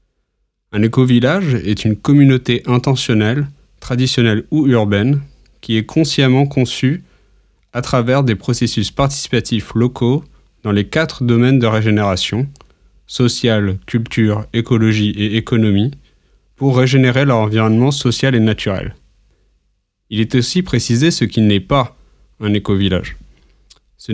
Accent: French